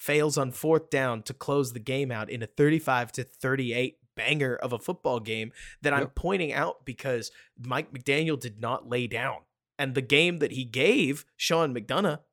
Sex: male